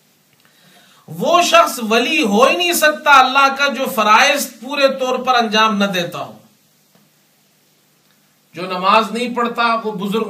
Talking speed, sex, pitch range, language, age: 140 wpm, male, 195-265 Hz, Urdu, 40-59